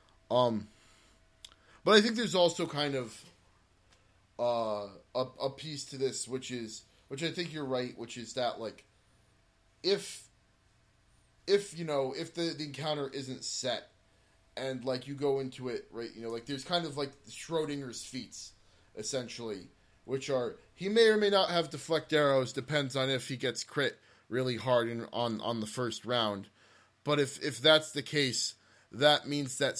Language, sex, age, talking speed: English, male, 20-39, 170 wpm